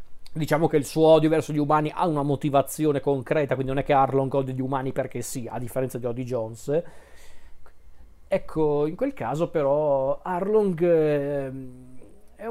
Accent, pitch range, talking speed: native, 135-170 Hz, 165 wpm